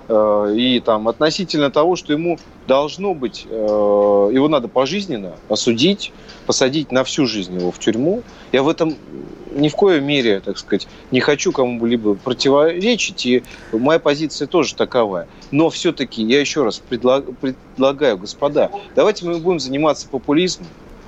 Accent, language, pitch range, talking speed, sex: native, Russian, 120-170 Hz, 140 wpm, male